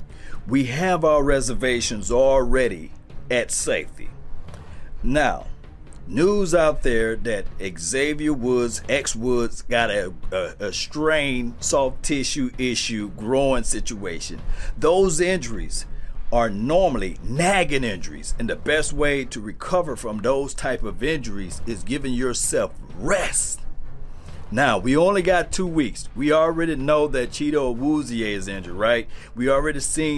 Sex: male